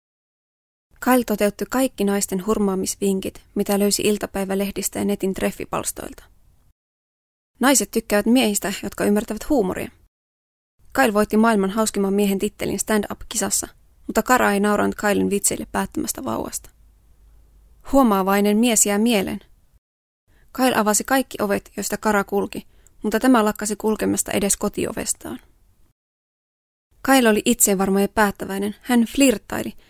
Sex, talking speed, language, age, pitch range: female, 115 wpm, Finnish, 20-39, 190-225 Hz